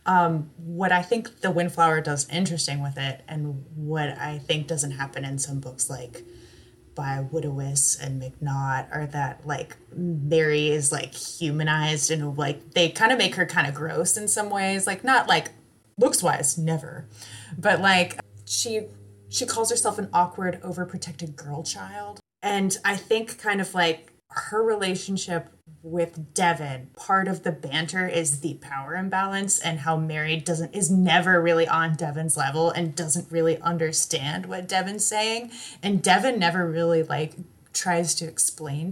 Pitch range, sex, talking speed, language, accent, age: 155-195 Hz, female, 160 wpm, English, American, 20-39